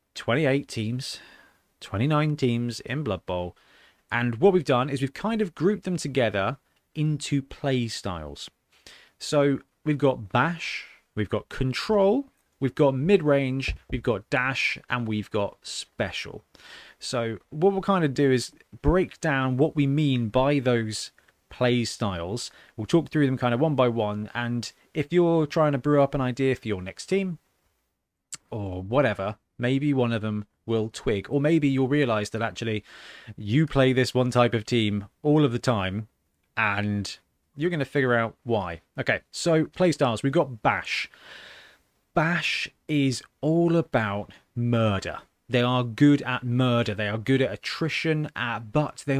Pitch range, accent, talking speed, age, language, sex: 115-145 Hz, British, 160 wpm, 30-49, English, male